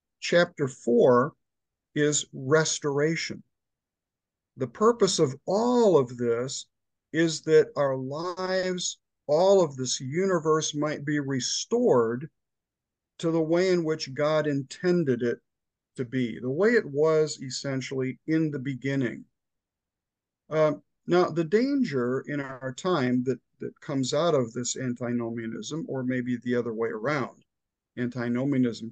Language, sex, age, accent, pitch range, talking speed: English, male, 50-69, American, 130-170 Hz, 125 wpm